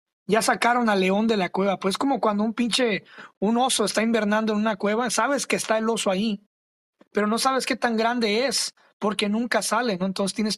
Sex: male